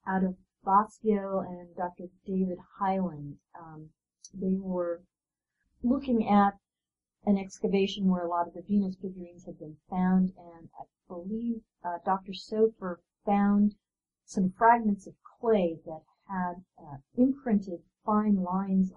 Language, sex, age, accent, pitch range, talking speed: English, female, 50-69, American, 170-205 Hz, 130 wpm